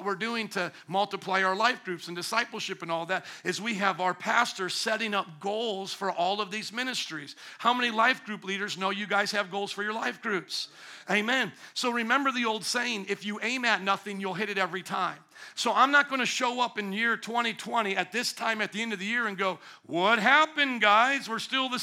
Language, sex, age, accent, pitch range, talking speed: English, male, 50-69, American, 200-250 Hz, 225 wpm